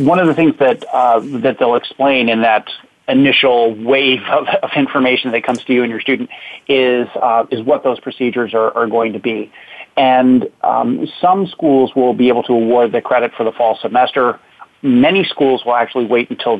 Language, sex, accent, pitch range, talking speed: English, male, American, 115-135 Hz, 200 wpm